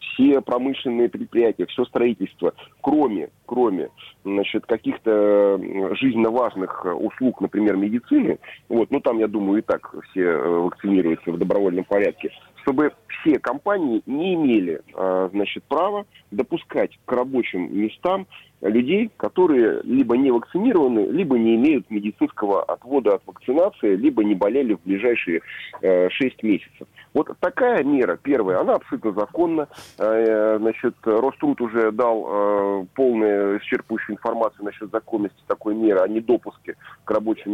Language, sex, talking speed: Russian, male, 125 wpm